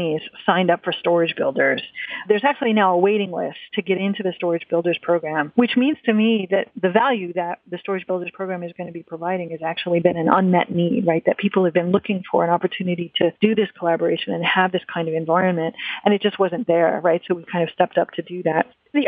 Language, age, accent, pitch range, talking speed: English, 40-59, American, 170-205 Hz, 240 wpm